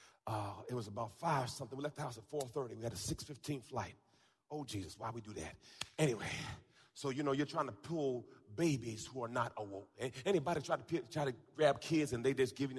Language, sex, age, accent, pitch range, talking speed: English, male, 30-49, American, 130-180 Hz, 235 wpm